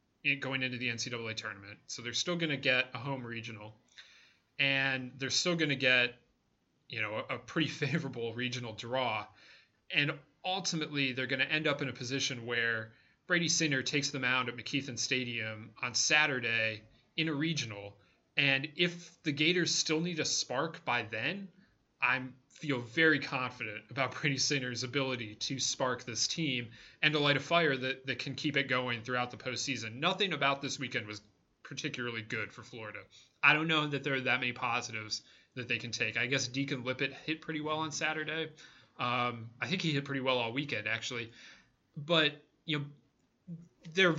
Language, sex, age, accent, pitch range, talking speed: English, male, 30-49, American, 120-150 Hz, 180 wpm